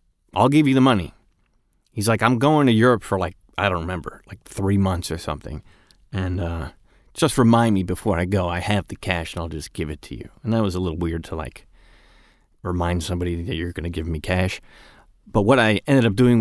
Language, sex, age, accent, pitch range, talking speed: English, male, 30-49, American, 95-120 Hz, 230 wpm